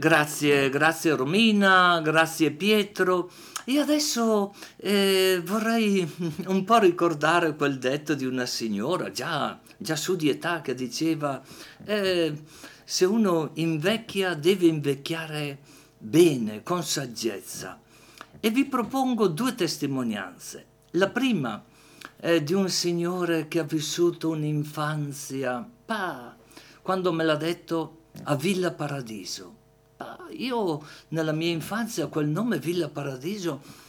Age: 50-69